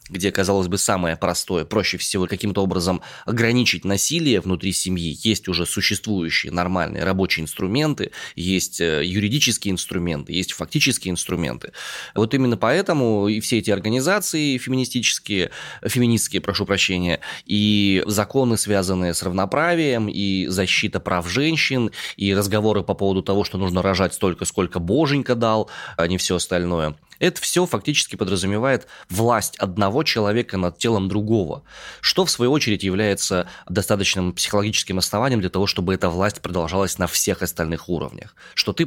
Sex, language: male, Russian